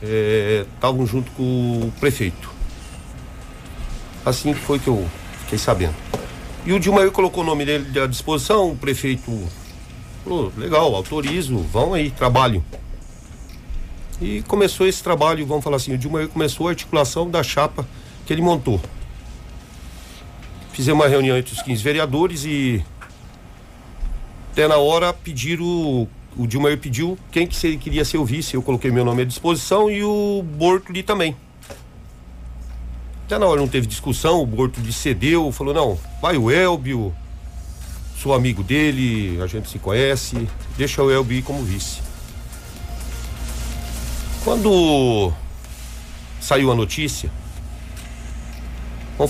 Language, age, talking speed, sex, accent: Portuguese, 50-69, 135 wpm, male, Brazilian